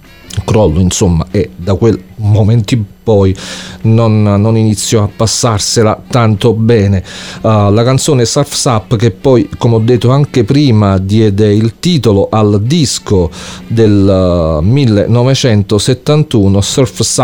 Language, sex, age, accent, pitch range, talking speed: English, male, 40-59, Italian, 95-115 Hz, 120 wpm